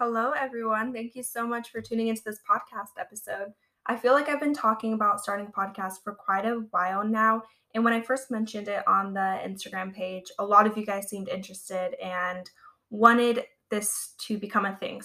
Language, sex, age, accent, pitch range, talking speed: English, female, 10-29, American, 195-235 Hz, 200 wpm